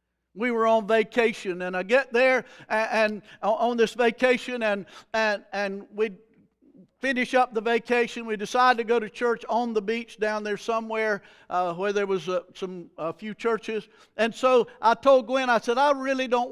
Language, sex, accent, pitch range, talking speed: English, male, American, 180-250 Hz, 190 wpm